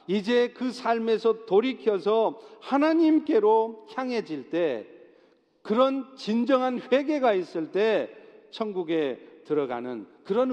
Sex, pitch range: male, 175-245 Hz